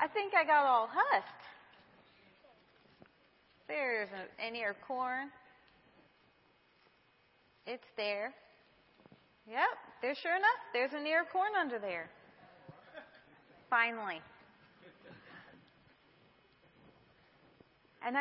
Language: English